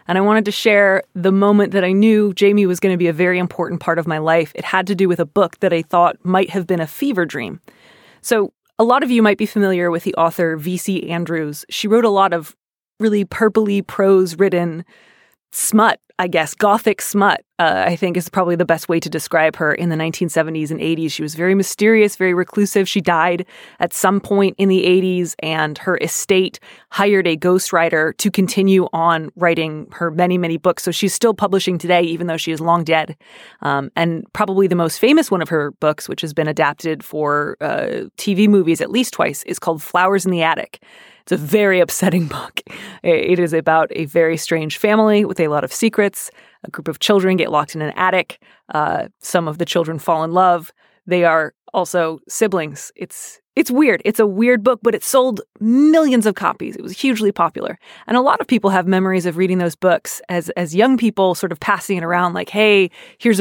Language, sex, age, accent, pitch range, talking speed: English, female, 20-39, American, 165-205 Hz, 215 wpm